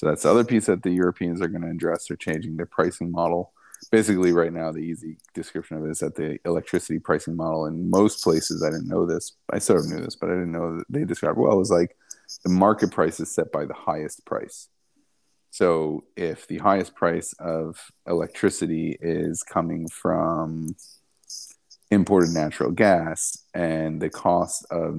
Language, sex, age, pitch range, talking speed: English, male, 30-49, 80-90 Hz, 195 wpm